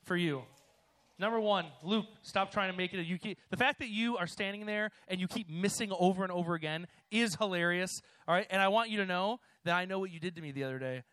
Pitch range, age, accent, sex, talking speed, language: 160-220 Hz, 30-49, American, male, 265 wpm, English